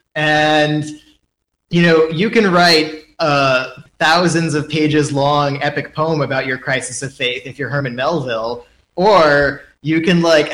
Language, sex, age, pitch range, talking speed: English, male, 20-39, 140-165 Hz, 155 wpm